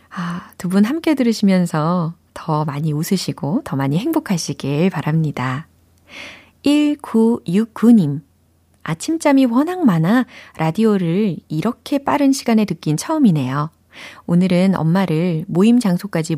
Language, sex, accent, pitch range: Korean, female, native, 155-225 Hz